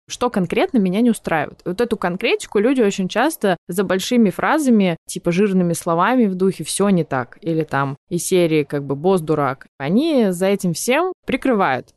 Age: 20-39